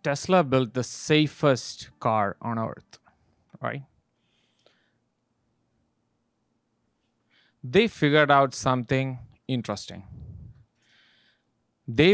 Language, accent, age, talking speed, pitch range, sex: English, Indian, 30-49, 70 wpm, 125-185 Hz, male